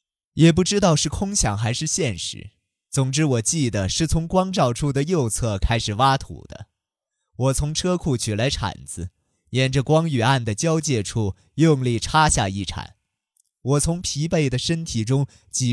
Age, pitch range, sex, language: 20-39, 105-150 Hz, male, Chinese